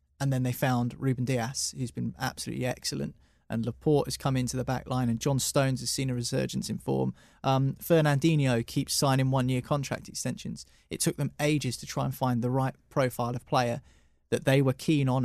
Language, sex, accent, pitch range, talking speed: English, male, British, 120-150 Hz, 205 wpm